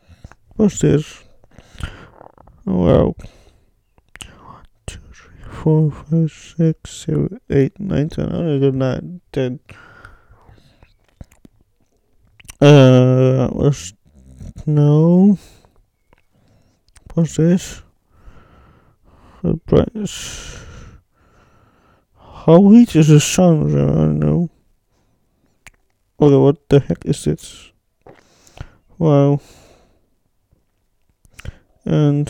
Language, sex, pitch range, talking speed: English, male, 105-160 Hz, 80 wpm